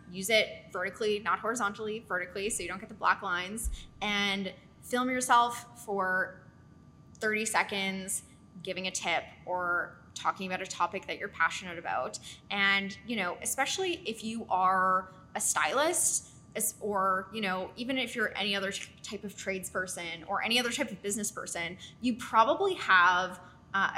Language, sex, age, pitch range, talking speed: English, female, 10-29, 185-230 Hz, 155 wpm